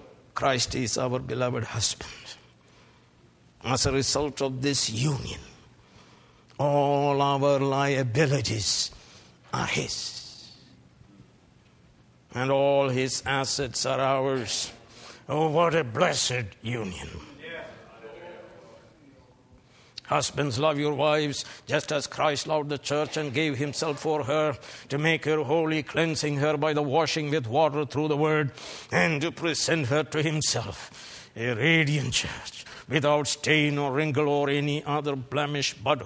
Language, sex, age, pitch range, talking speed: English, male, 60-79, 125-155 Hz, 125 wpm